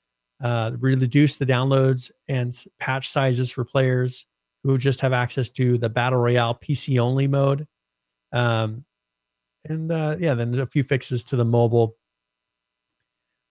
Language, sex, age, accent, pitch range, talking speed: English, male, 40-59, American, 115-135 Hz, 145 wpm